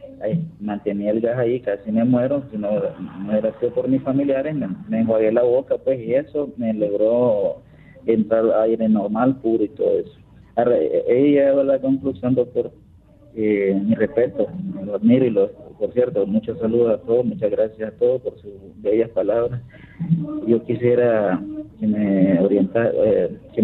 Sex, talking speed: male, 175 wpm